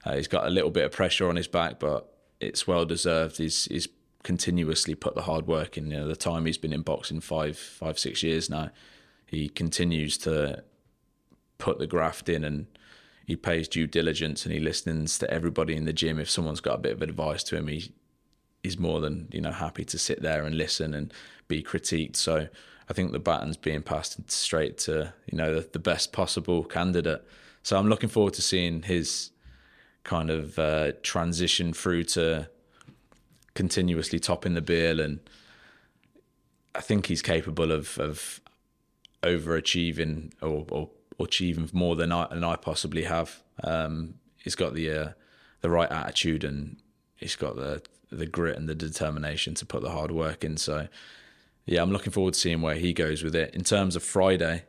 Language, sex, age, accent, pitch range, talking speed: English, male, 20-39, British, 80-85 Hz, 190 wpm